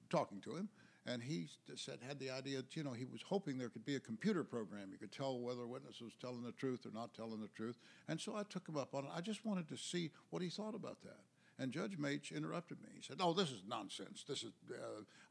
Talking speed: 265 wpm